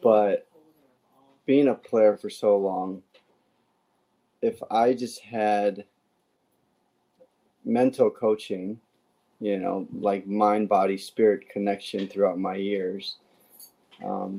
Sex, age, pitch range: male, 30-49, 100-115 Hz